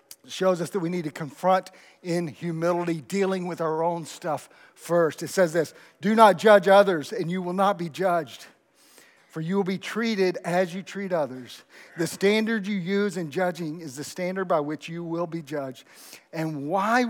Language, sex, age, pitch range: English, male, 50-69, 165-200 Hz